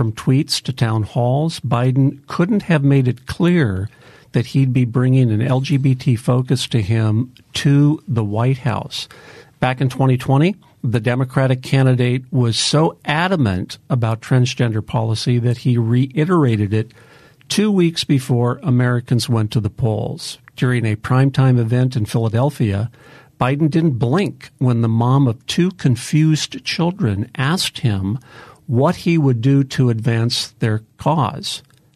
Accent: American